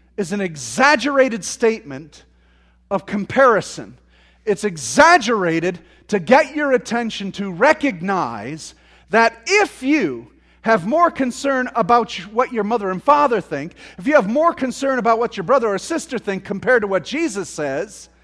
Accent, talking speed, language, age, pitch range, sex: American, 145 wpm, English, 40-59, 170-265 Hz, male